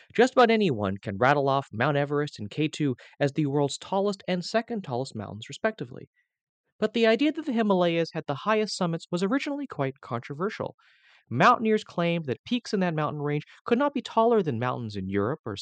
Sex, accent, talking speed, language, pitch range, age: male, American, 190 wpm, English, 125-200 Hz, 30-49